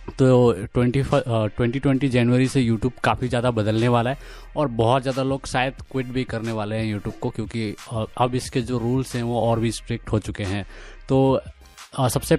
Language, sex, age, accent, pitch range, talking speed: Hindi, male, 20-39, native, 110-130 Hz, 190 wpm